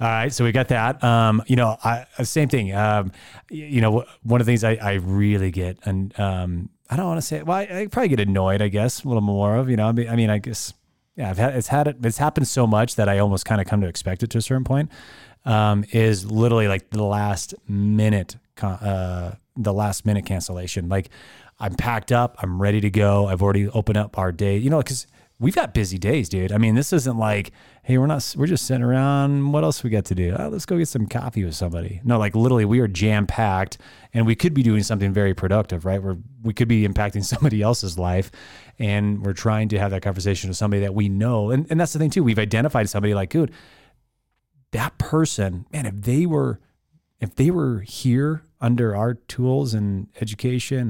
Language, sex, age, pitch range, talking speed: English, male, 30-49, 100-130 Hz, 230 wpm